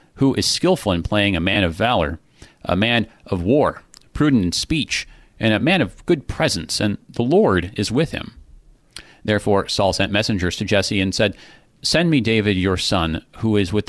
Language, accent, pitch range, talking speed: English, American, 90-115 Hz, 190 wpm